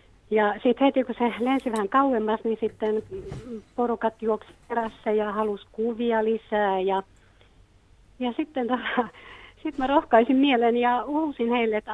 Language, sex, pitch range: Finnish, female, 175-230 Hz